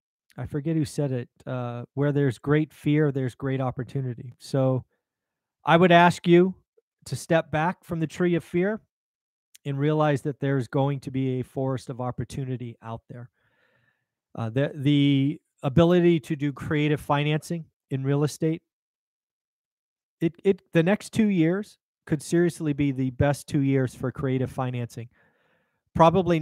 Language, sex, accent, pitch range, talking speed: English, male, American, 130-160 Hz, 150 wpm